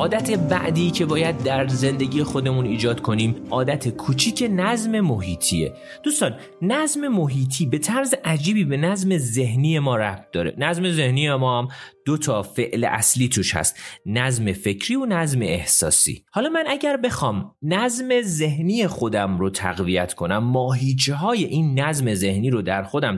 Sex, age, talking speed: male, 30-49, 155 wpm